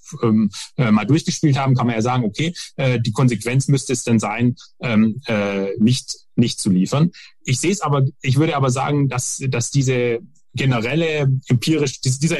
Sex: male